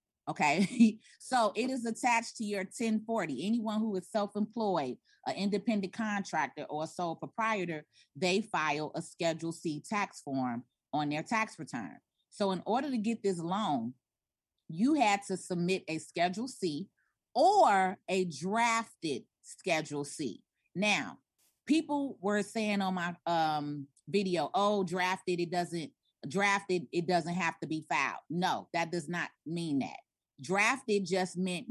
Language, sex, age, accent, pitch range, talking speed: English, female, 30-49, American, 165-215 Hz, 145 wpm